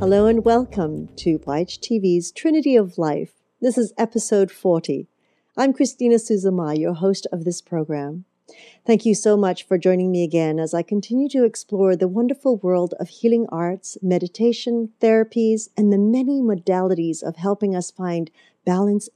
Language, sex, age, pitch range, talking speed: English, female, 50-69, 175-230 Hz, 160 wpm